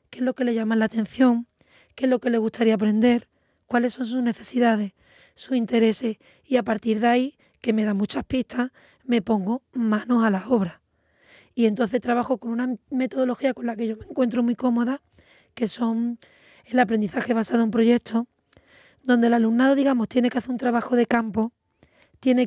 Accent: Spanish